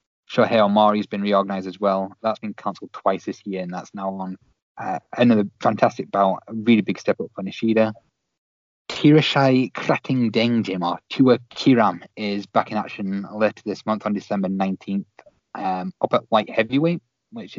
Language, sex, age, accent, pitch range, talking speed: English, male, 20-39, British, 95-115 Hz, 165 wpm